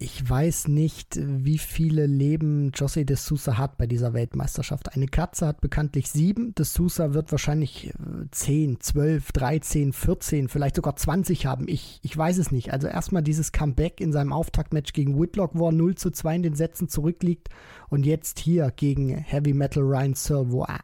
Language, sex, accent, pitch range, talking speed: German, male, German, 140-170 Hz, 175 wpm